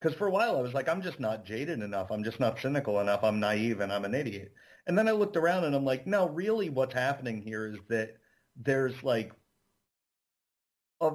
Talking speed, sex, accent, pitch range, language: 220 wpm, male, American, 105-135 Hz, English